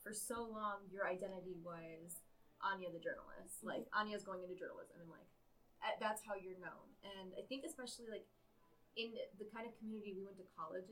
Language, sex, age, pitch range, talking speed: English, female, 20-39, 185-220 Hz, 190 wpm